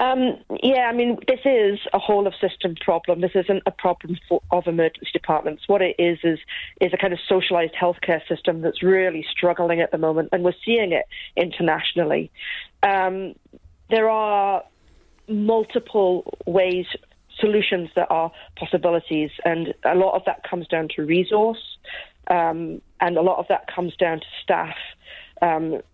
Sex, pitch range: female, 170-210 Hz